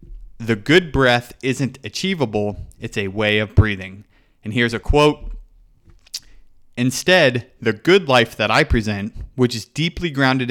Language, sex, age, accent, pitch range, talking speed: English, male, 30-49, American, 110-135 Hz, 145 wpm